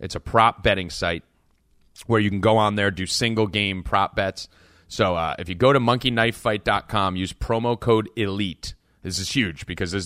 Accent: American